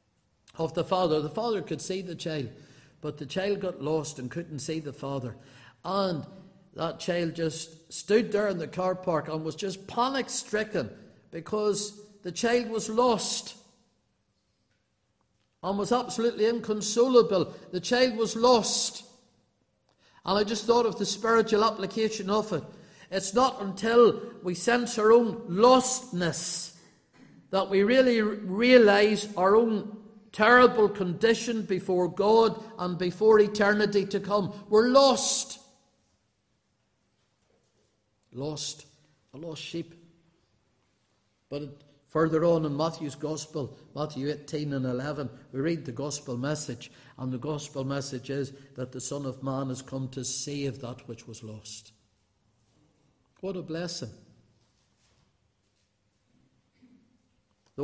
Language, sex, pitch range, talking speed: English, male, 135-215 Hz, 130 wpm